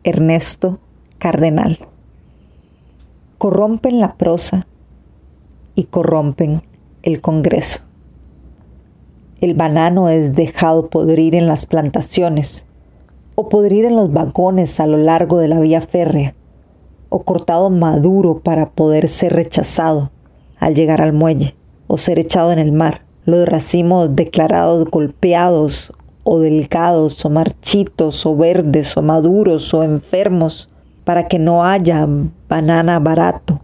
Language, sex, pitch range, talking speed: Spanish, female, 150-175 Hz, 120 wpm